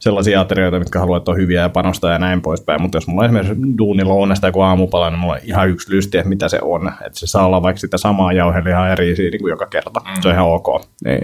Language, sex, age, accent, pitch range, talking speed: Finnish, male, 30-49, native, 90-105 Hz, 260 wpm